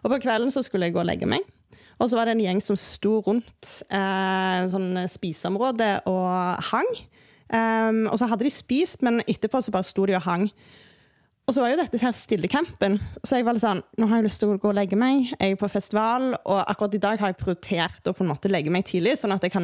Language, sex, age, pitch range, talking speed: English, female, 20-39, 190-245 Hz, 255 wpm